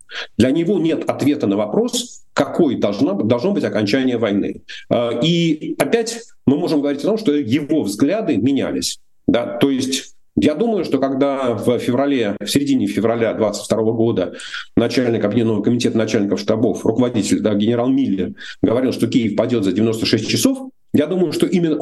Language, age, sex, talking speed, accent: Russian, 40-59, male, 155 wpm, native